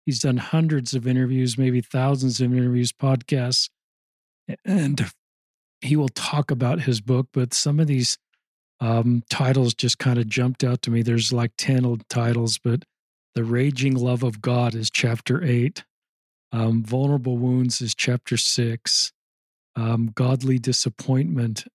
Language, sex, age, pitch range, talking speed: English, male, 40-59, 125-140 Hz, 145 wpm